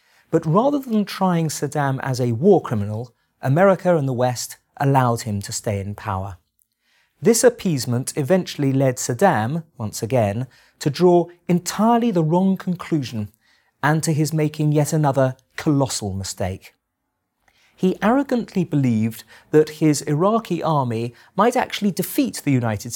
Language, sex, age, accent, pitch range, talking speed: English, male, 40-59, British, 110-170 Hz, 135 wpm